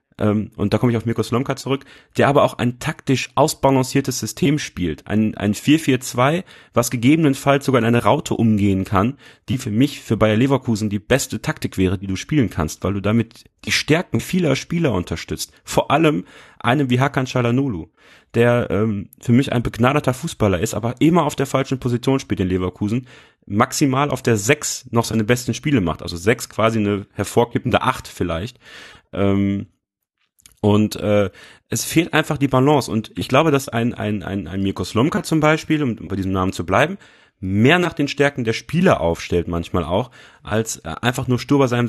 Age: 30-49